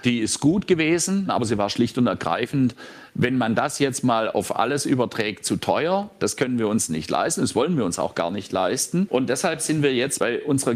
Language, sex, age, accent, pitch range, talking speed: German, male, 50-69, German, 120-160 Hz, 230 wpm